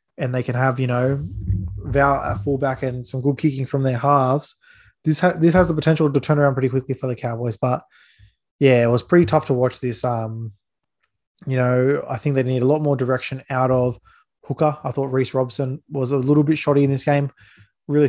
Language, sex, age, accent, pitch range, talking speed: English, male, 20-39, Australian, 125-140 Hz, 215 wpm